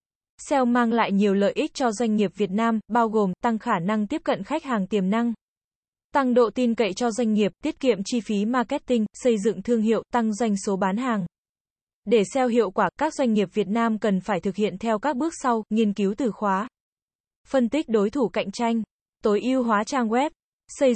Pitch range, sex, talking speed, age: 210-250 Hz, female, 220 wpm, 20-39